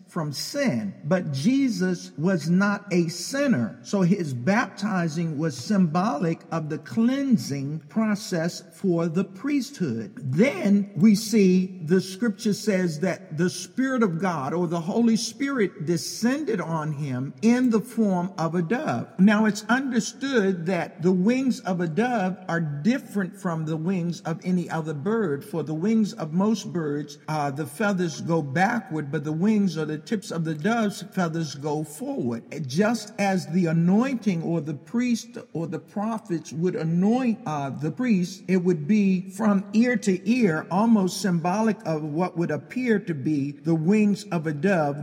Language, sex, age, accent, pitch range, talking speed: English, male, 50-69, American, 160-215 Hz, 160 wpm